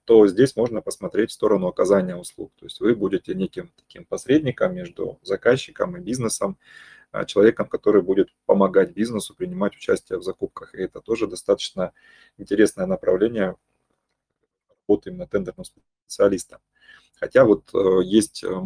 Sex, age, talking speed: male, 20-39, 130 wpm